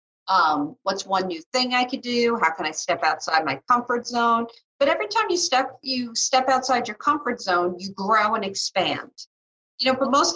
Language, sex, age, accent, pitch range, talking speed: English, female, 40-59, American, 225-285 Hz, 205 wpm